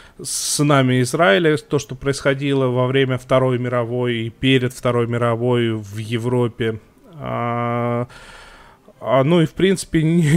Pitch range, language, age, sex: 120-145 Hz, Russian, 20-39, male